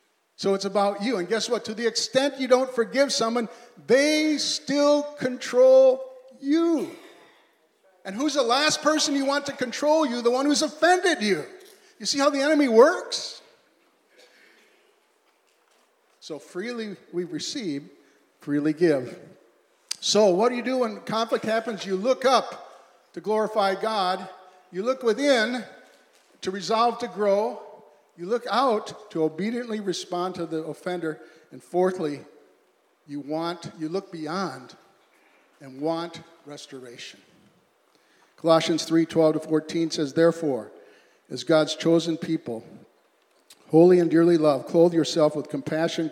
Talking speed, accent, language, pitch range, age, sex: 135 wpm, American, English, 160-255 Hz, 50-69, male